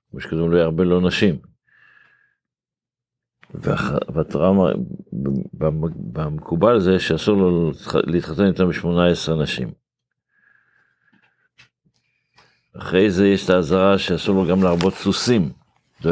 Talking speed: 95 wpm